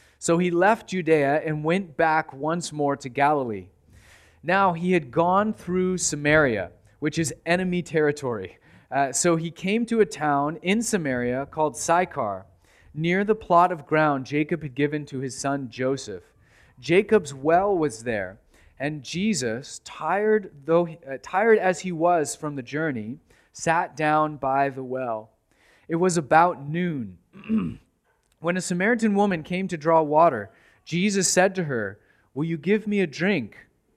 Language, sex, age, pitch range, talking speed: English, male, 30-49, 135-180 Hz, 150 wpm